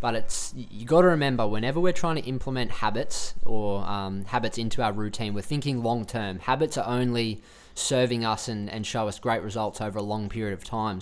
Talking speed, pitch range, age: 205 wpm, 105-125 Hz, 20-39